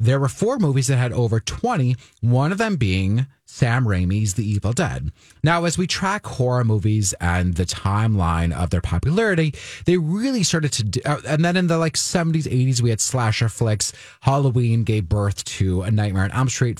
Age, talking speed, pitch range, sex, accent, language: 30-49, 190 wpm, 100-140 Hz, male, American, English